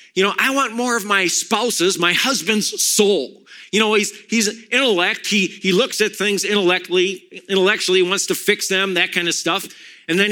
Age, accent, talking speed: 50-69, American, 190 wpm